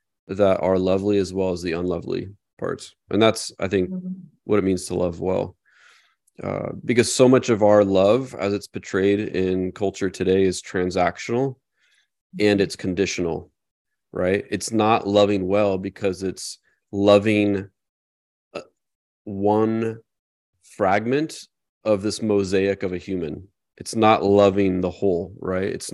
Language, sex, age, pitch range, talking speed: English, male, 30-49, 95-105 Hz, 140 wpm